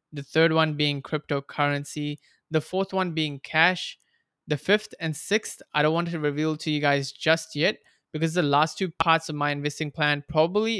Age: 20-39